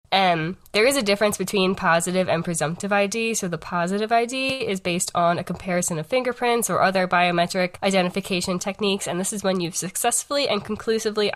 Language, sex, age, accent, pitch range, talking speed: English, female, 10-29, American, 175-215 Hz, 180 wpm